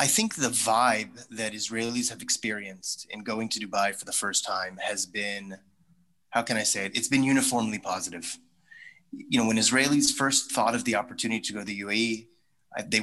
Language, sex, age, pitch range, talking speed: English, male, 30-49, 100-130 Hz, 195 wpm